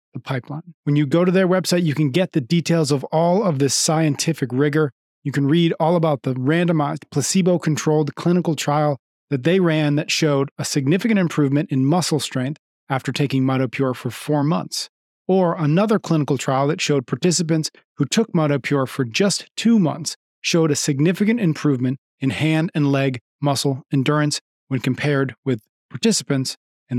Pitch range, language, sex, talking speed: 140-175 Hz, English, male, 165 wpm